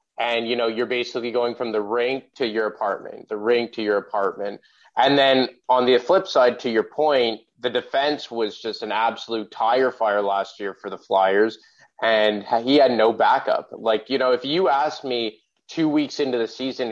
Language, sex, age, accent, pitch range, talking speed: English, male, 20-39, American, 110-130 Hz, 200 wpm